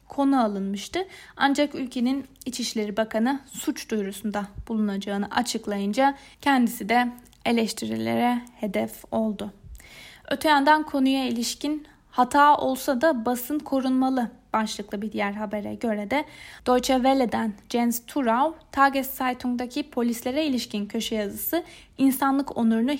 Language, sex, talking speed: Turkish, female, 105 wpm